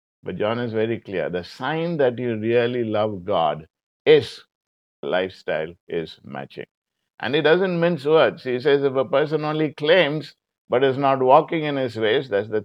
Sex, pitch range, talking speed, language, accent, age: male, 110-145 Hz, 175 wpm, English, Indian, 50-69